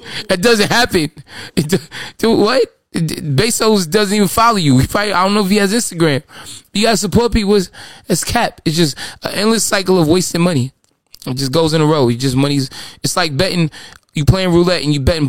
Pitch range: 145-185 Hz